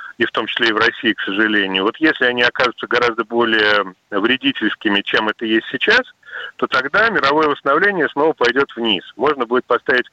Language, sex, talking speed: Russian, male, 180 wpm